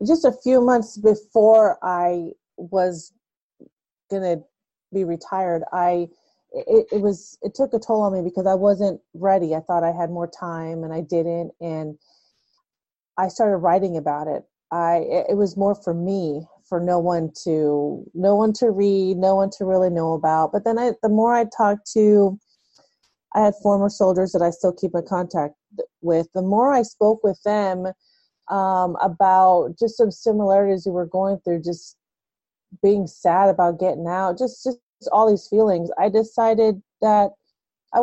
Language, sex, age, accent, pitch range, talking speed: English, female, 30-49, American, 180-220 Hz, 175 wpm